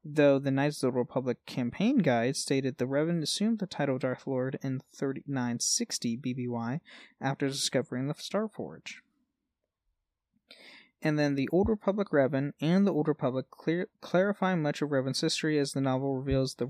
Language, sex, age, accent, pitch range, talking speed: English, male, 20-39, American, 130-165 Hz, 170 wpm